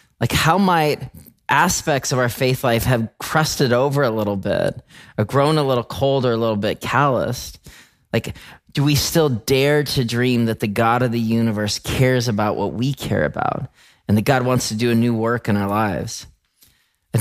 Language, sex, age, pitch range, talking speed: English, male, 30-49, 105-130 Hz, 195 wpm